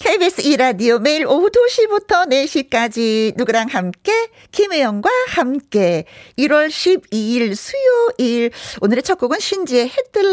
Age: 40-59